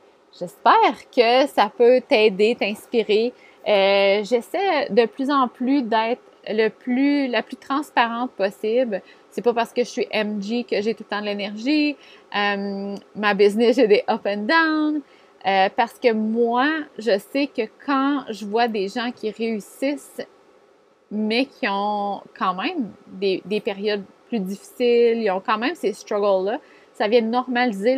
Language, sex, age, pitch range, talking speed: French, female, 30-49, 205-280 Hz, 160 wpm